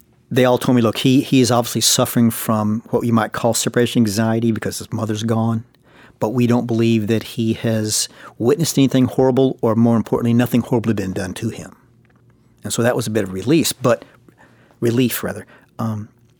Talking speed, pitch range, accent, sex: 190 wpm, 110-125 Hz, American, male